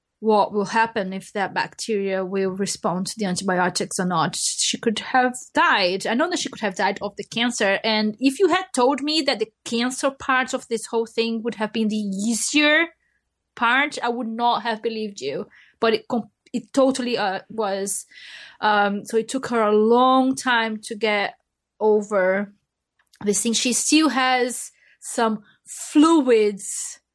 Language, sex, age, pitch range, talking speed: English, female, 20-39, 205-240 Hz, 170 wpm